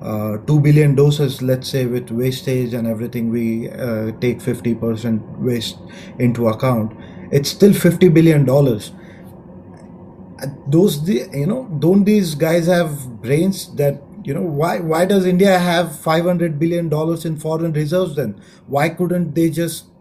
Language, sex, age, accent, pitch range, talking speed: English, male, 30-49, Indian, 130-170 Hz, 145 wpm